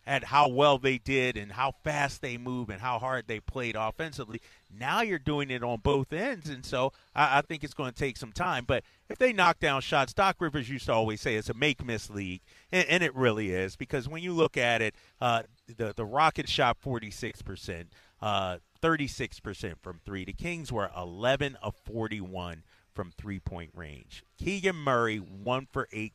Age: 30-49